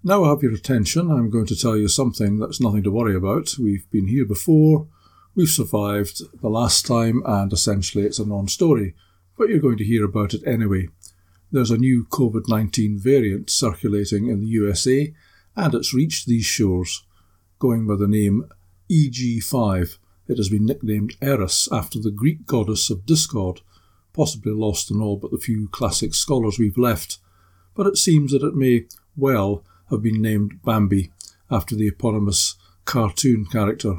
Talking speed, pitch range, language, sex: 170 wpm, 100-120 Hz, English, male